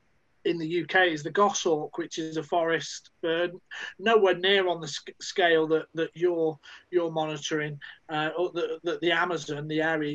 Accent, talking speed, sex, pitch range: British, 170 wpm, male, 165-210 Hz